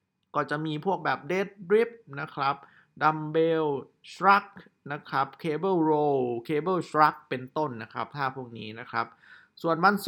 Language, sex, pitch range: Thai, male, 130-170 Hz